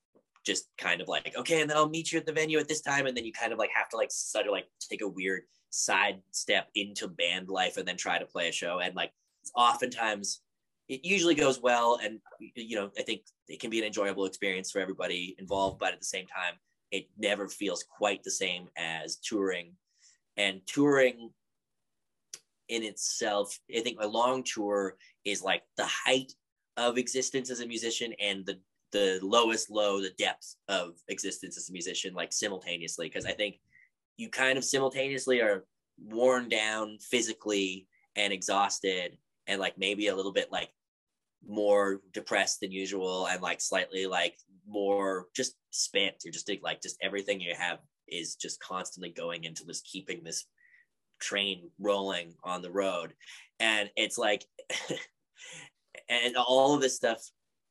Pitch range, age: 95-125 Hz, 20-39